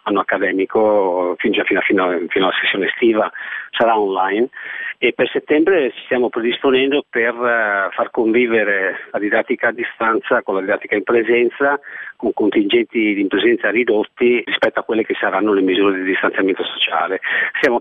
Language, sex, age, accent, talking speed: Italian, male, 40-59, native, 145 wpm